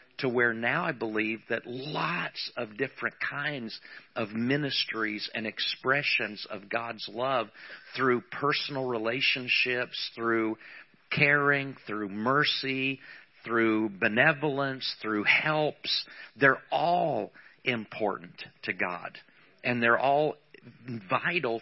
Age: 50-69